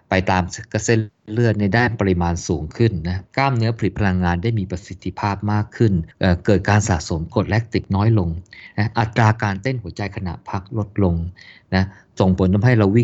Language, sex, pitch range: Thai, male, 90-110 Hz